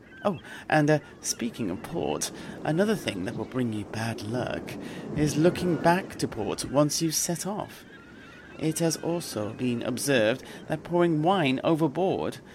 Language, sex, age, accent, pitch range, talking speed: English, male, 40-59, British, 125-165 Hz, 155 wpm